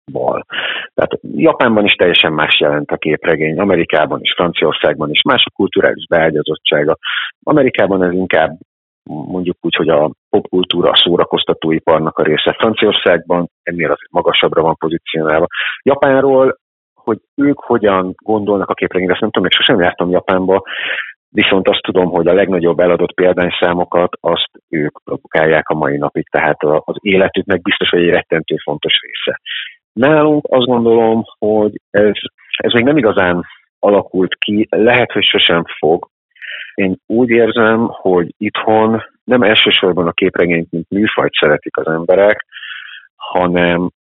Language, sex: Hungarian, male